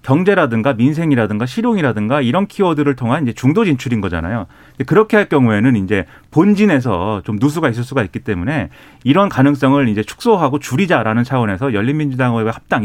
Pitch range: 120-180 Hz